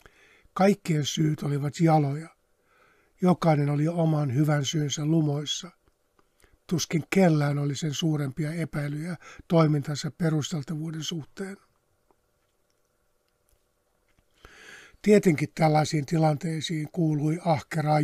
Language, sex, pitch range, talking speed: Finnish, male, 150-175 Hz, 80 wpm